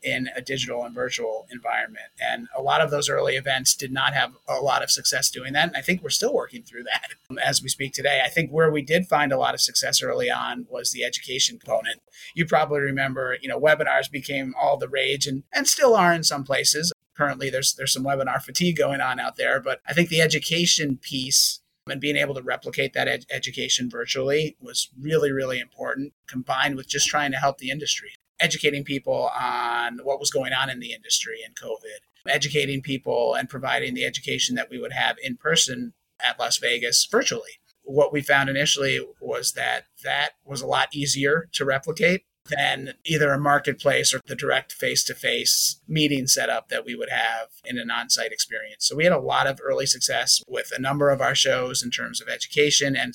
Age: 30-49